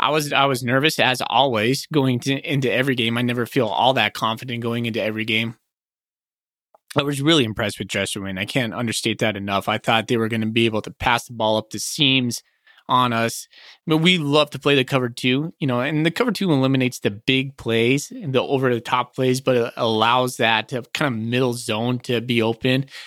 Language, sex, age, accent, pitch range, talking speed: English, male, 20-39, American, 120-150 Hz, 225 wpm